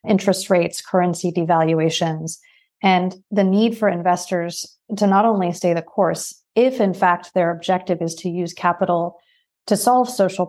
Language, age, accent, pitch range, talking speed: English, 30-49, American, 175-195 Hz, 155 wpm